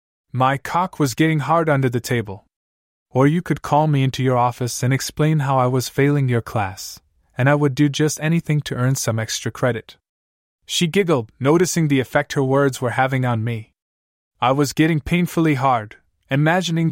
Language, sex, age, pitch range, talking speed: English, male, 20-39, 115-150 Hz, 185 wpm